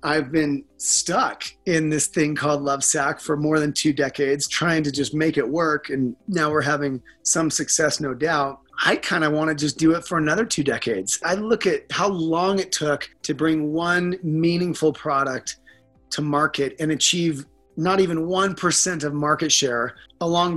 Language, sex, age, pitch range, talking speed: English, male, 30-49, 145-175 Hz, 185 wpm